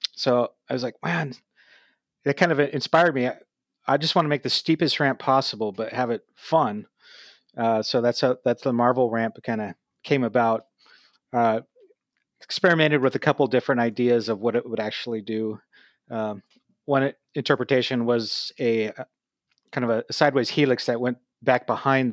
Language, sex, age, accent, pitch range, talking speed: English, male, 30-49, American, 115-145 Hz, 175 wpm